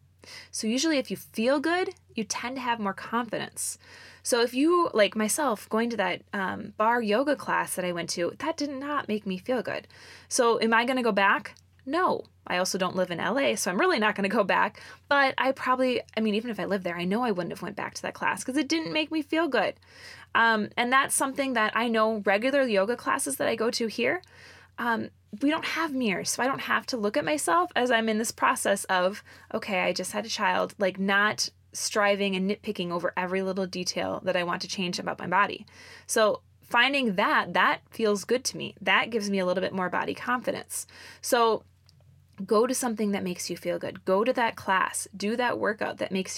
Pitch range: 195-255 Hz